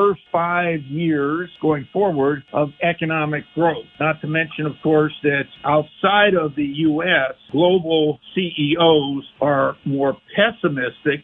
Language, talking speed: English, 115 wpm